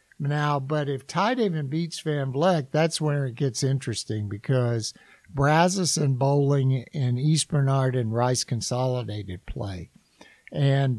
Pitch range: 125-155 Hz